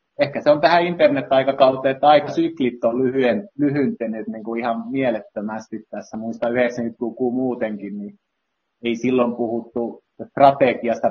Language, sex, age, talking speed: Finnish, male, 30-49, 135 wpm